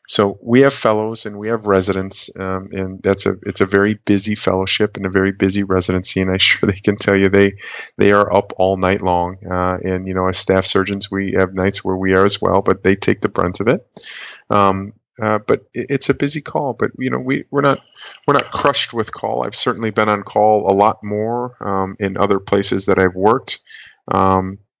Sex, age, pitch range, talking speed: male, 30-49, 95-105 Hz, 225 wpm